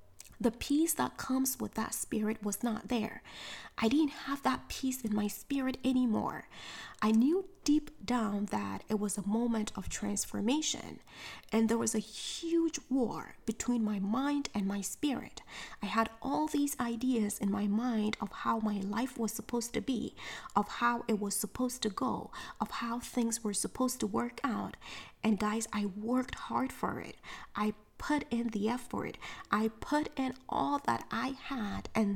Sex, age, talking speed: female, 20-39, 175 wpm